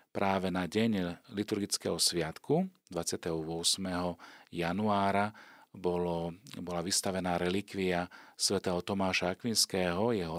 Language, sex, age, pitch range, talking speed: Slovak, male, 40-59, 90-100 Hz, 85 wpm